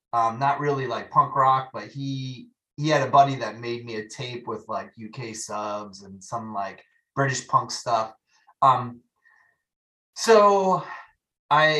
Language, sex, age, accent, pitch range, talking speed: English, male, 30-49, American, 120-155 Hz, 155 wpm